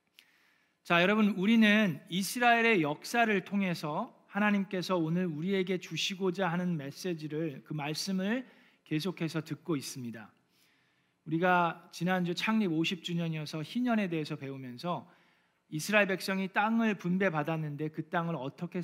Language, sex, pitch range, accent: Korean, male, 155-200 Hz, native